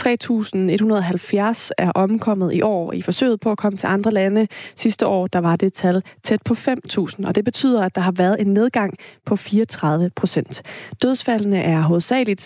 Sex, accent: female, native